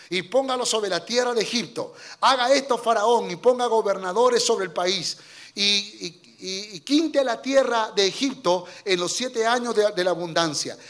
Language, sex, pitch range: Spanish, male, 180-270 Hz